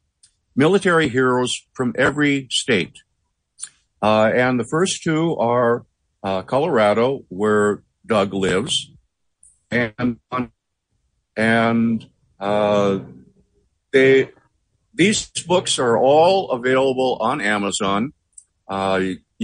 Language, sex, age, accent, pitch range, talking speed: English, male, 50-69, American, 95-130 Hz, 85 wpm